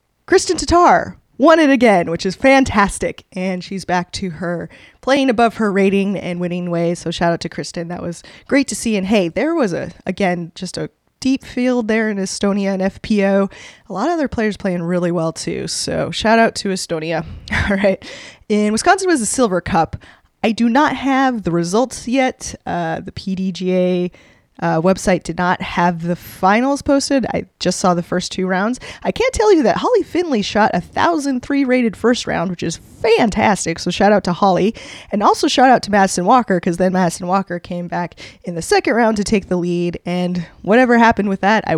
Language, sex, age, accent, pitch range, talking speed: English, female, 20-39, American, 180-245 Hz, 200 wpm